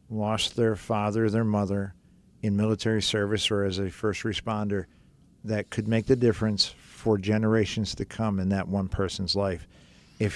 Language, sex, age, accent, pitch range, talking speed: English, male, 50-69, American, 100-115 Hz, 160 wpm